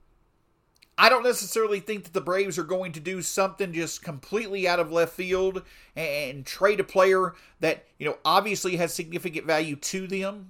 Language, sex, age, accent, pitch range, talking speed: English, male, 40-59, American, 155-195 Hz, 175 wpm